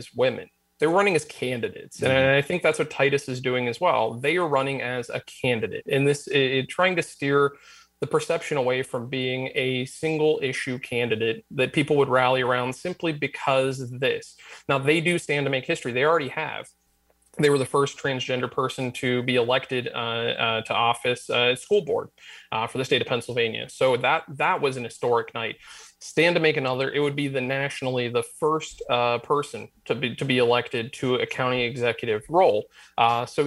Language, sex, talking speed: English, male, 195 wpm